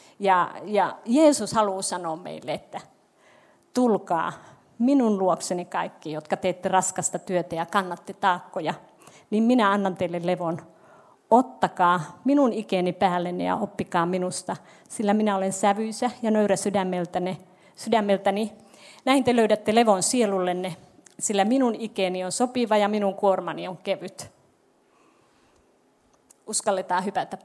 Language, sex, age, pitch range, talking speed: Finnish, female, 30-49, 185-225 Hz, 120 wpm